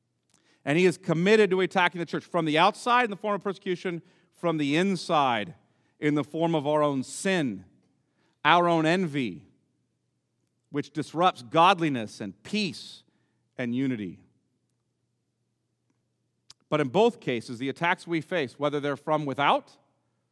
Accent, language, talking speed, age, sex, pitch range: American, English, 140 wpm, 40-59, male, 150-225 Hz